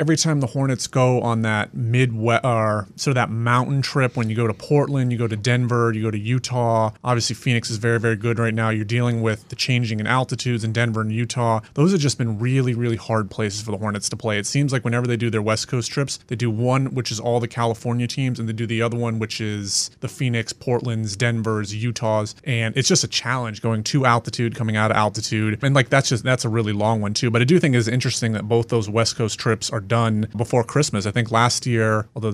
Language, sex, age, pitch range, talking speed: English, male, 30-49, 110-125 Hz, 250 wpm